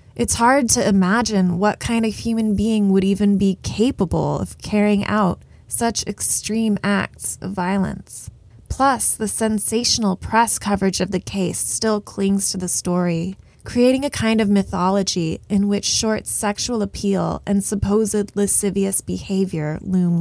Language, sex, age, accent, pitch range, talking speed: English, female, 20-39, American, 190-225 Hz, 145 wpm